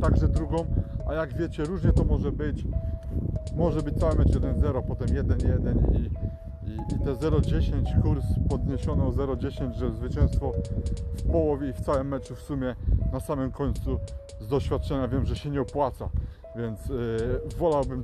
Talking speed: 155 wpm